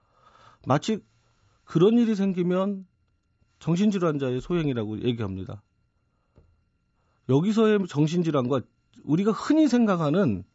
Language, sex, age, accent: Korean, male, 40-59, native